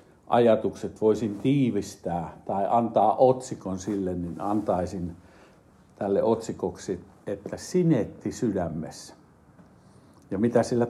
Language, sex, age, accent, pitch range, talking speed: Finnish, male, 60-79, native, 110-165 Hz, 95 wpm